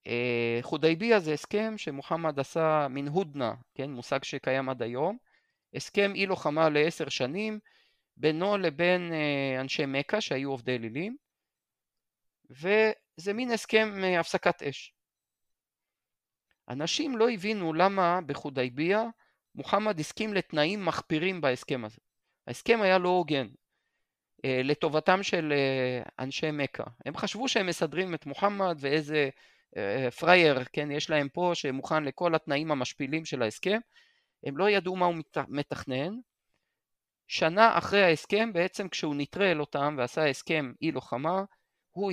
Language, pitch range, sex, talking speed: Hebrew, 140-195 Hz, male, 125 wpm